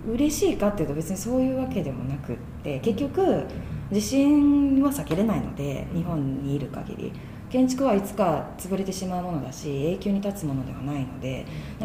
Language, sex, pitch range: Japanese, female, 145-235 Hz